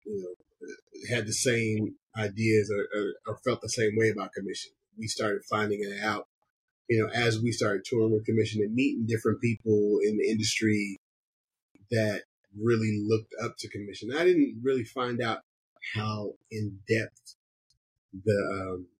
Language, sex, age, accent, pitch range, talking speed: English, male, 30-49, American, 100-115 Hz, 160 wpm